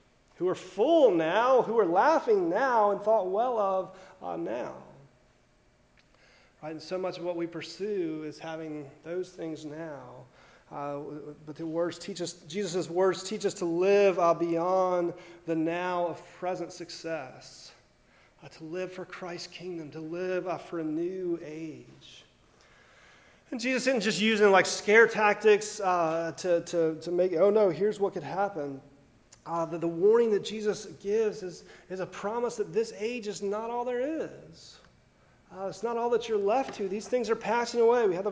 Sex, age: male, 30-49